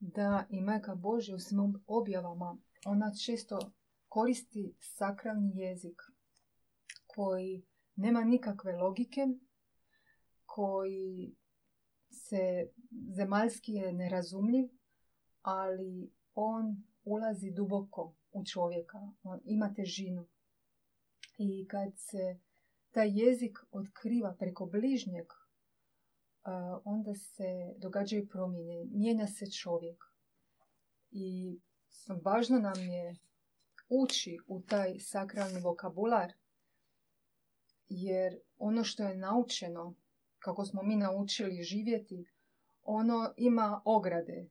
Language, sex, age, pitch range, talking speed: Croatian, female, 30-49, 185-220 Hz, 90 wpm